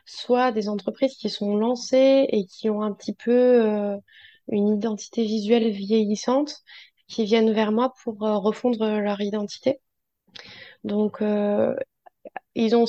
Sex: female